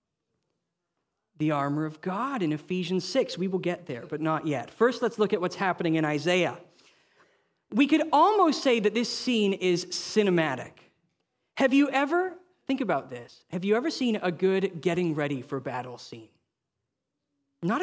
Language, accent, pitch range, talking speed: English, American, 135-185 Hz, 165 wpm